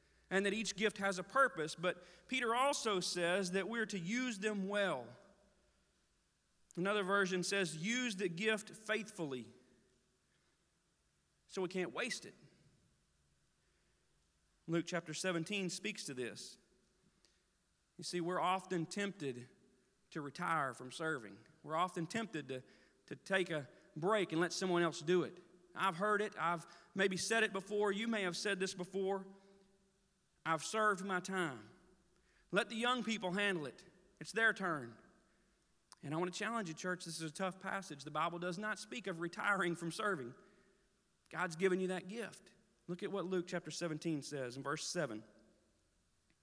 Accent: American